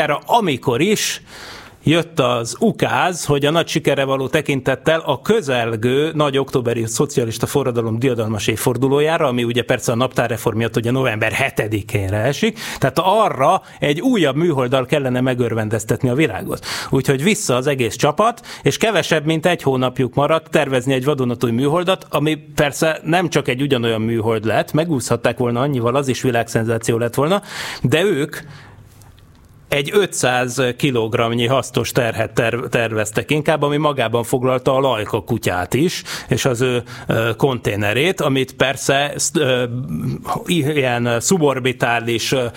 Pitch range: 120-150 Hz